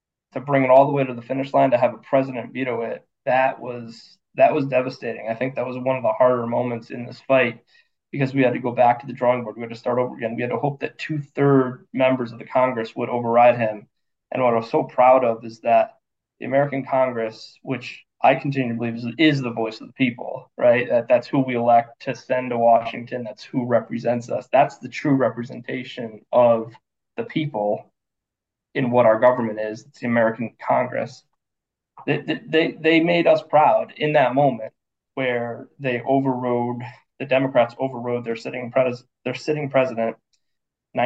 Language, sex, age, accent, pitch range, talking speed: English, male, 20-39, American, 115-130 Hz, 195 wpm